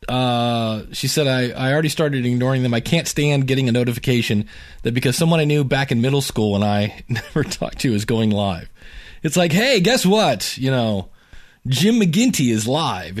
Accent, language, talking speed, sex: American, English, 195 wpm, male